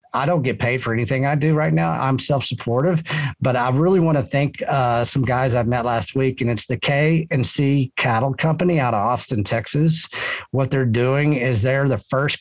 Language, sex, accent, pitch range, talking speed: English, male, American, 115-140 Hz, 205 wpm